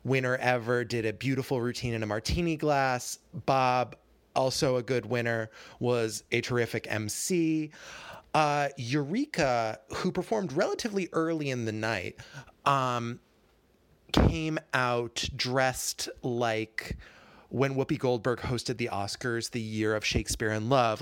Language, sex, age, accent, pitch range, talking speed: English, male, 30-49, American, 110-140 Hz, 130 wpm